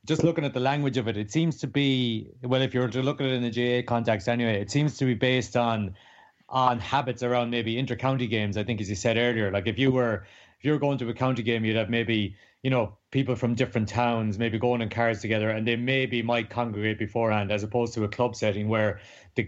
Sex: male